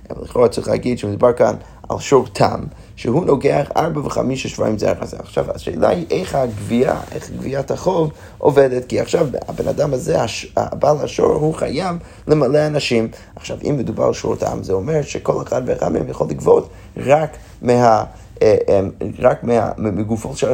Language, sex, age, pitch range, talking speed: Hebrew, male, 30-49, 105-150 Hz, 165 wpm